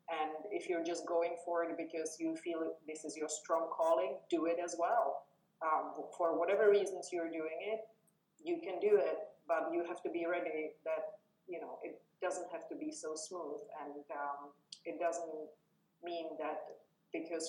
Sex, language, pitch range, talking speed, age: female, English, 155-185 Hz, 180 wpm, 30-49